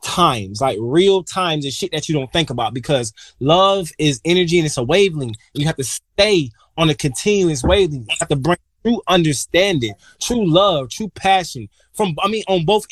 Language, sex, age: English, male, 20-39